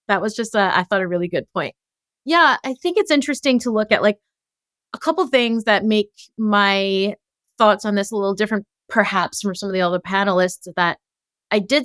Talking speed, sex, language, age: 210 wpm, female, English, 30-49